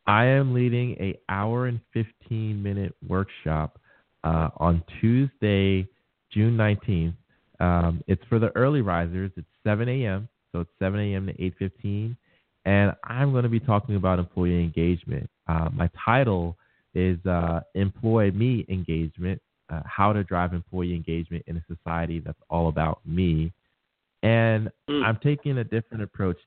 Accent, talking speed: American, 145 wpm